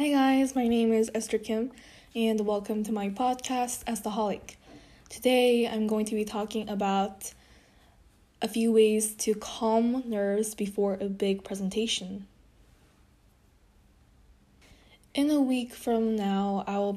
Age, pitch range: 10-29, 205-230 Hz